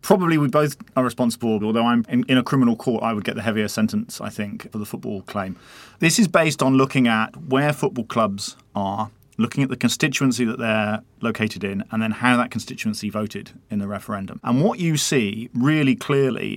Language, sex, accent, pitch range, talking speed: English, male, British, 110-135 Hz, 205 wpm